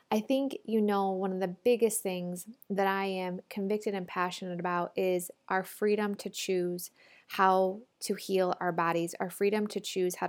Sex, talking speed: female, 180 wpm